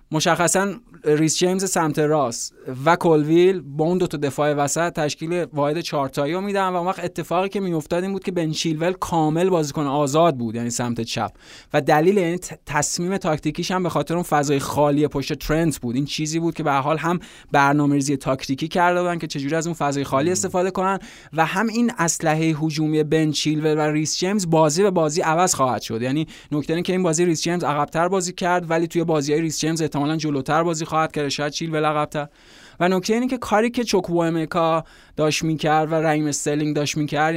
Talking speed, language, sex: 200 wpm, Persian, male